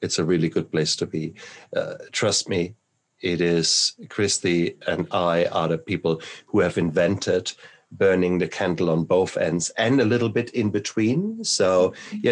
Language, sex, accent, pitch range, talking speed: English, male, German, 80-100 Hz, 170 wpm